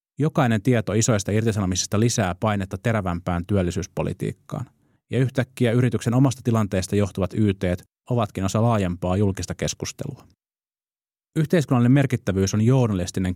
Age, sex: 30-49, male